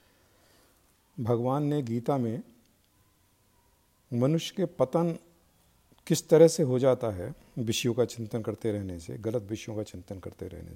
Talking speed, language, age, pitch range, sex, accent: 140 wpm, Hindi, 50-69, 110-155 Hz, male, native